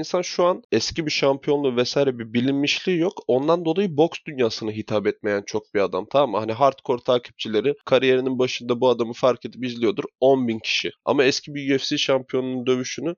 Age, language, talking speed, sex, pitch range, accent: 20-39, Turkish, 180 wpm, male, 110-135 Hz, native